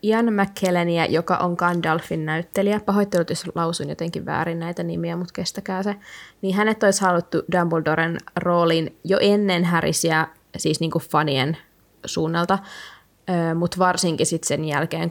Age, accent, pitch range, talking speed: 20-39, native, 160-180 Hz, 140 wpm